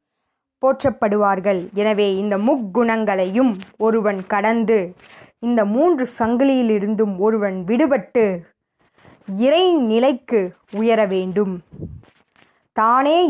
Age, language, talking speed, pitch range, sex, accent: 20-39, Tamil, 70 wpm, 200-245 Hz, female, native